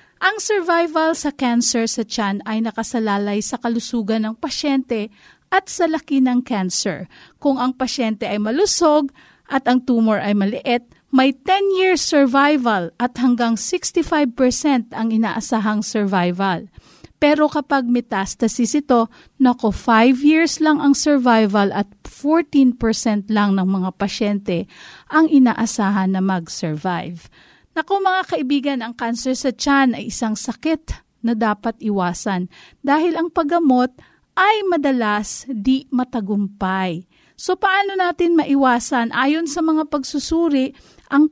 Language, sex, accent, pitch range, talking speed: Filipino, female, native, 225-315 Hz, 125 wpm